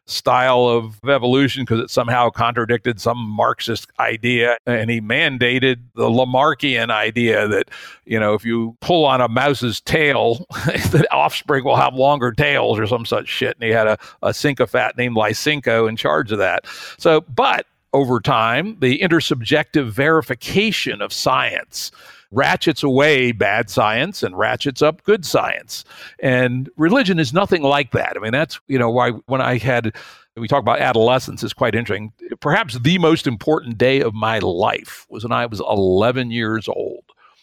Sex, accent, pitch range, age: male, American, 115-140 Hz, 60-79